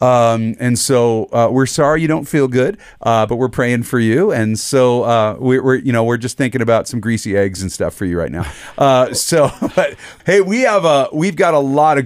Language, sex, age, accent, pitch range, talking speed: English, male, 40-59, American, 115-155 Hz, 240 wpm